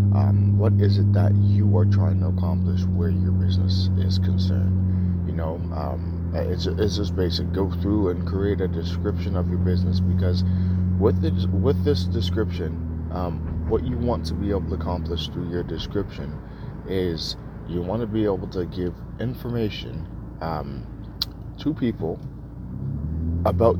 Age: 30-49